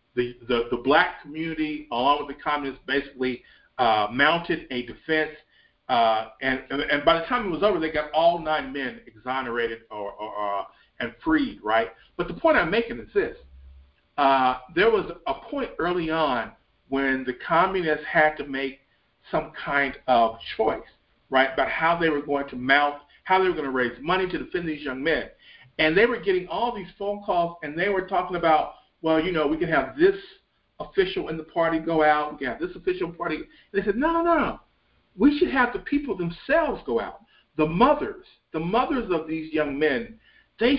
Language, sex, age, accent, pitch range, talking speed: English, male, 50-69, American, 135-225 Hz, 195 wpm